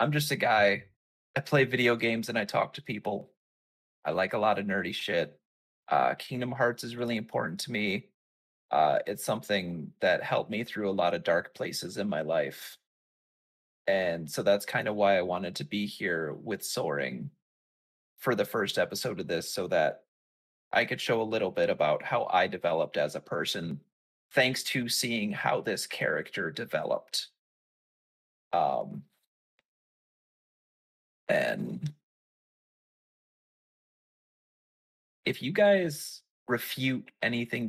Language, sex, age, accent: English, male, 20-39, American